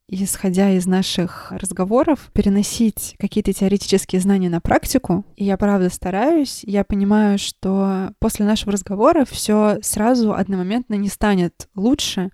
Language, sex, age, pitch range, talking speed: Russian, female, 20-39, 190-215 Hz, 125 wpm